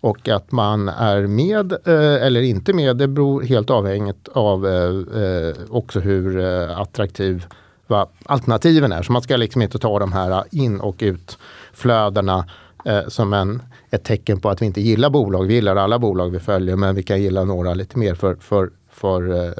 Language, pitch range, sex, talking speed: Swedish, 95-125 Hz, male, 160 wpm